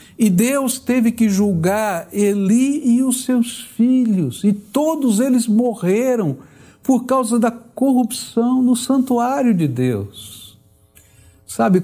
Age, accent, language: 60-79, Brazilian, Portuguese